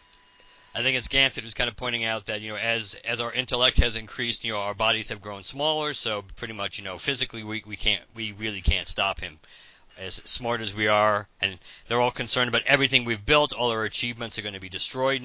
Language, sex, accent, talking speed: English, male, American, 230 wpm